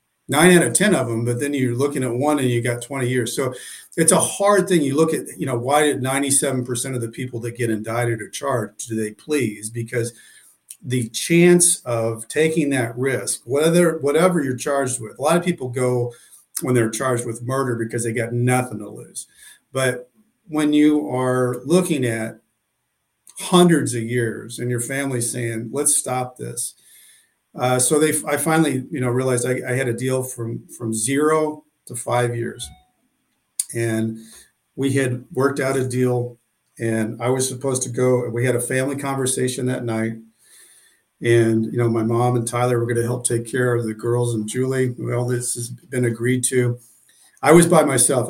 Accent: American